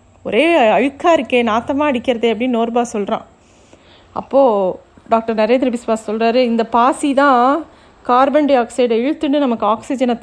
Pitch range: 225-280 Hz